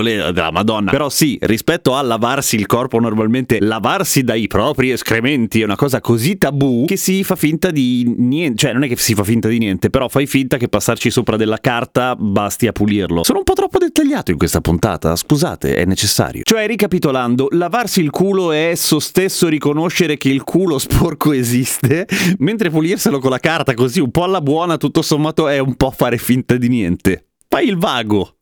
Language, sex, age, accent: Italian, male, 30-49, native